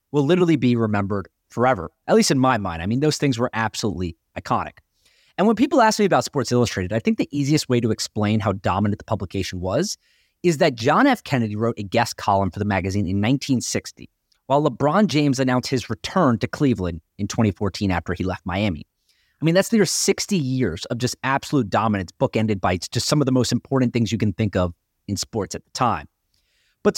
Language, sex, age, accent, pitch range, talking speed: English, male, 30-49, American, 105-145 Hz, 210 wpm